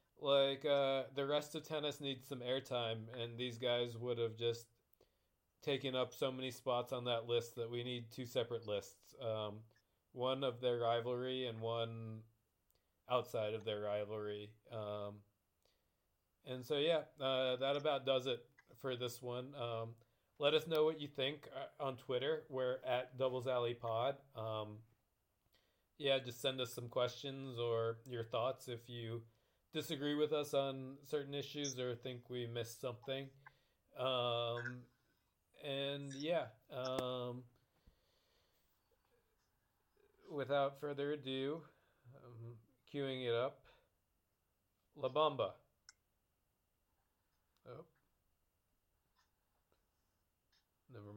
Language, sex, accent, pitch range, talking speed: English, male, American, 110-130 Hz, 120 wpm